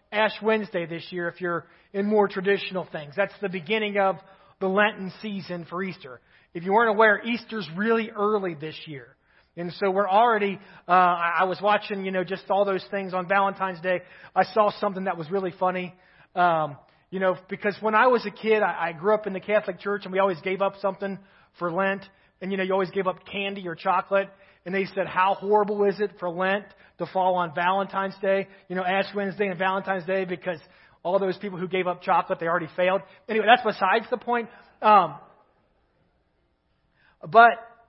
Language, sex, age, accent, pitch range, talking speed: English, male, 30-49, American, 180-205 Hz, 200 wpm